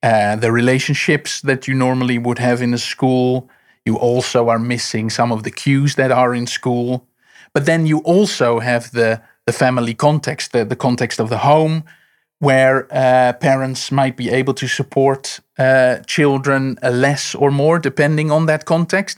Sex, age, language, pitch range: male, 30-49, English, 120-135 Hz